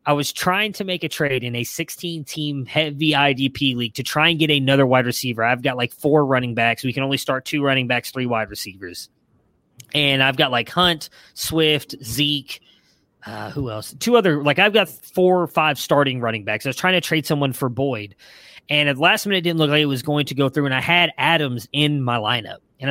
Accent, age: American, 20-39